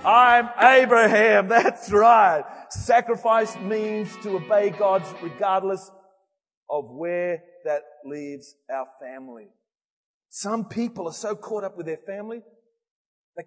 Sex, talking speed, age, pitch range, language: male, 115 wpm, 40-59, 170-235 Hz, English